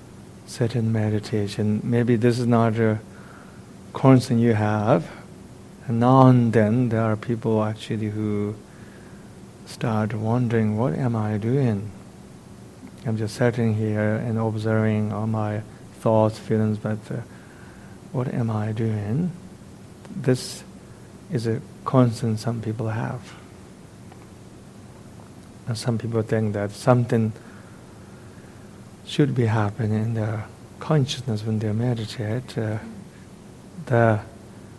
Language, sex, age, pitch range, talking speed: English, male, 50-69, 110-120 Hz, 115 wpm